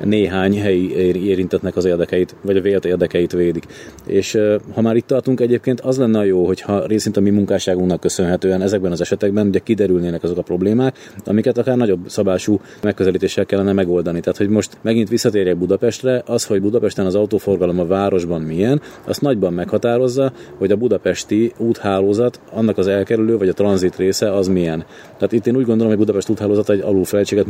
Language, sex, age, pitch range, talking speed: Hungarian, male, 30-49, 95-110 Hz, 180 wpm